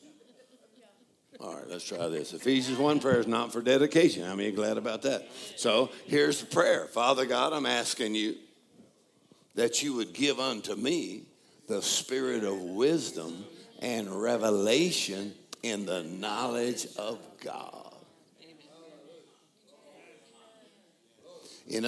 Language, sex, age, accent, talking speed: English, male, 60-79, American, 125 wpm